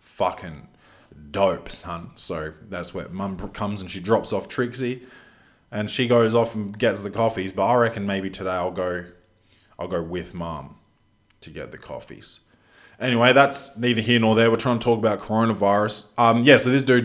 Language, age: English, 20-39